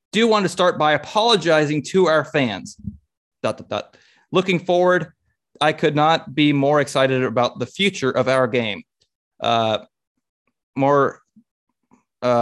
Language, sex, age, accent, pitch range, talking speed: English, male, 20-39, American, 125-160 Hz, 120 wpm